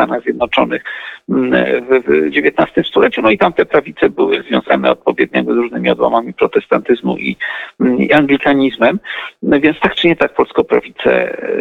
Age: 50-69